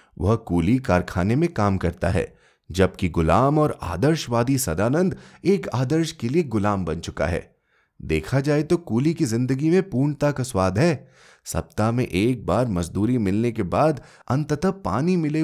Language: Hindi